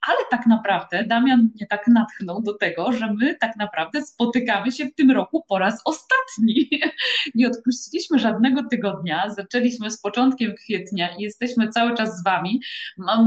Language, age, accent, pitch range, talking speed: Polish, 20-39, native, 200-250 Hz, 165 wpm